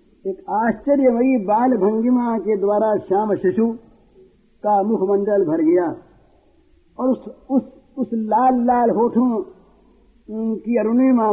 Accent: native